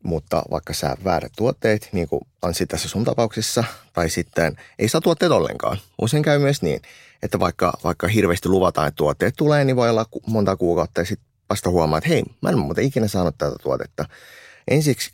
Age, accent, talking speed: 30-49, native, 190 wpm